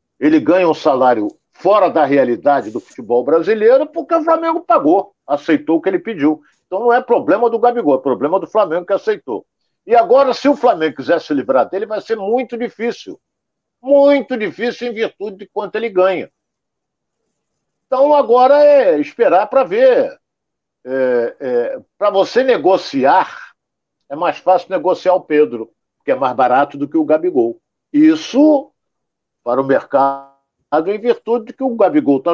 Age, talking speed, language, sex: 50-69, 165 wpm, Portuguese, male